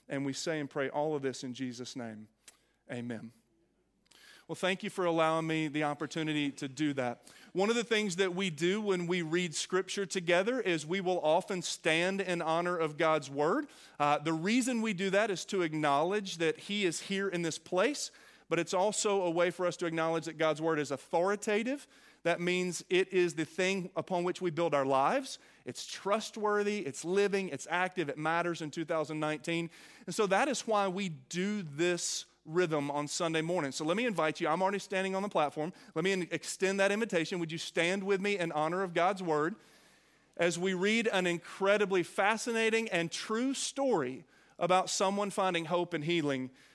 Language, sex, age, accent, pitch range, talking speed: English, male, 40-59, American, 155-195 Hz, 195 wpm